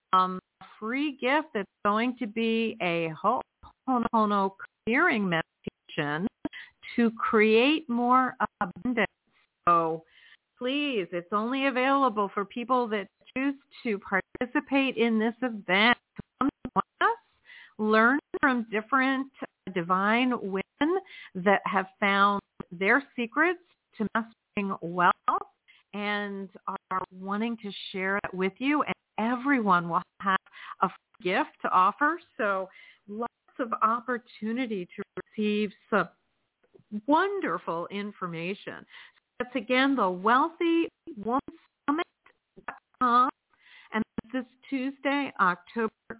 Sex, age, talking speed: female, 50-69, 105 wpm